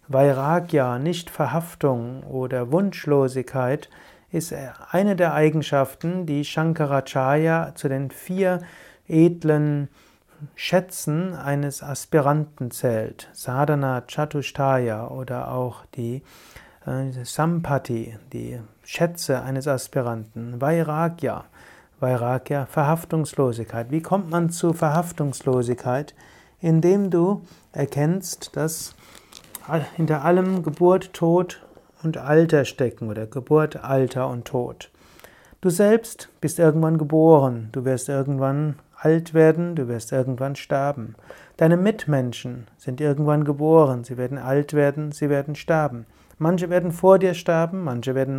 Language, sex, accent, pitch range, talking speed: German, male, German, 130-165 Hz, 110 wpm